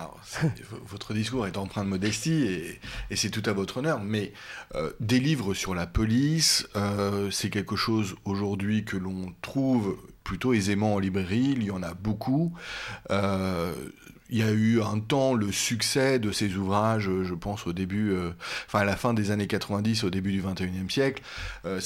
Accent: French